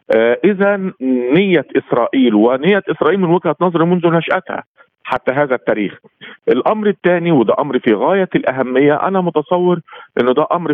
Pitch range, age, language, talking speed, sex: 115-160 Hz, 50-69, Arabic, 140 wpm, male